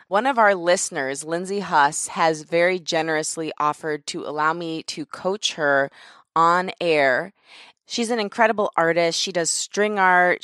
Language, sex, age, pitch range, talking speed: English, female, 20-39, 160-200 Hz, 150 wpm